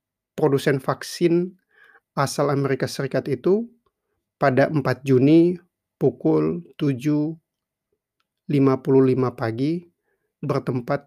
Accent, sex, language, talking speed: native, male, Indonesian, 70 wpm